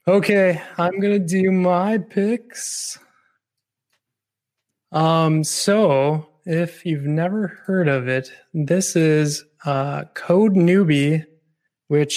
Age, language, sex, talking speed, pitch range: 20-39, English, male, 100 wpm, 145-175 Hz